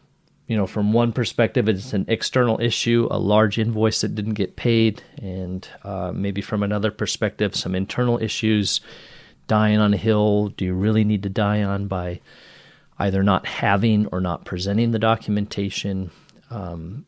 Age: 40-59